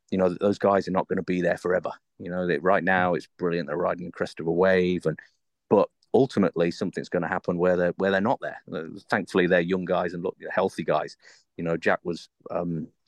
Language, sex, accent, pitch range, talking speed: English, male, British, 85-95 Hz, 235 wpm